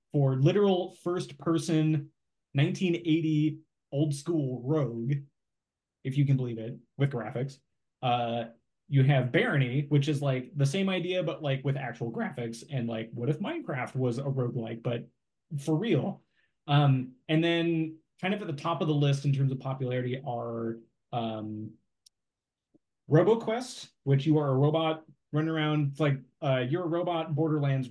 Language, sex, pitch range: English, male, 120-150 Hz